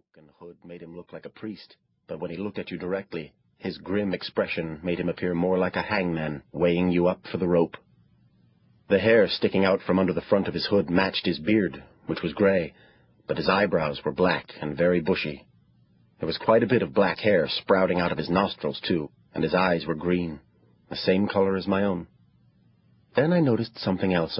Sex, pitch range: male, 75-95 Hz